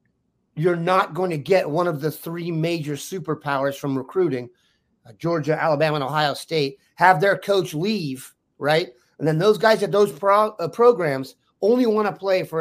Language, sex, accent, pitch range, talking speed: English, male, American, 155-200 Hz, 175 wpm